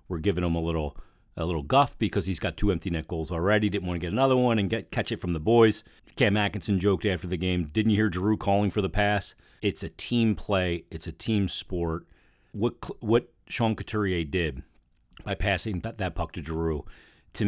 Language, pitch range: English, 85-105 Hz